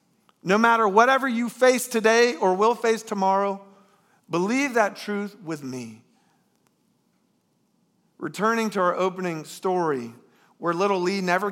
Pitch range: 175-235 Hz